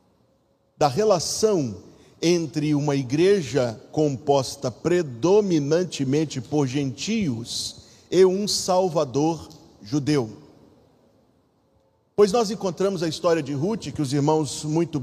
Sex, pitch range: male, 140-200 Hz